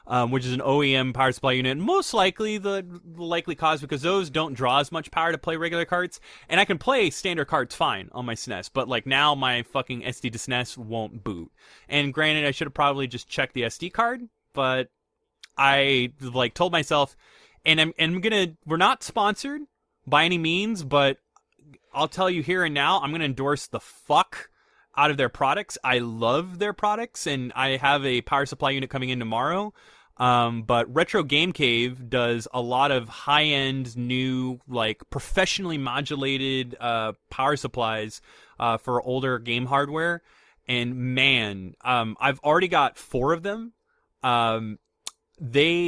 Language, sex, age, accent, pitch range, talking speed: English, male, 20-39, American, 125-165 Hz, 180 wpm